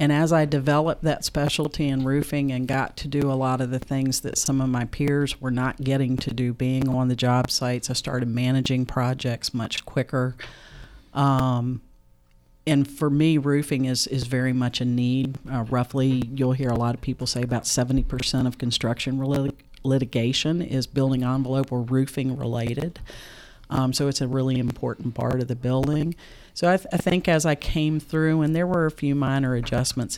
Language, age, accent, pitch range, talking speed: English, 50-69, American, 120-140 Hz, 190 wpm